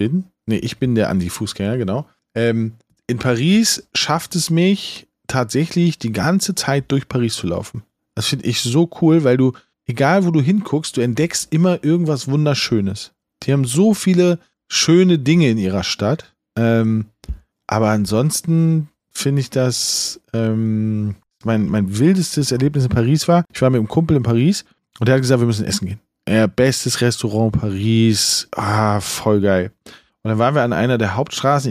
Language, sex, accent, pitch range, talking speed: German, male, German, 110-145 Hz, 165 wpm